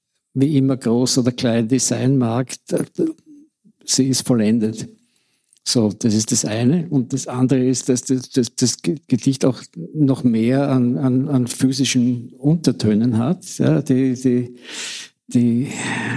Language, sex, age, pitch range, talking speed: German, male, 60-79, 120-135 Hz, 130 wpm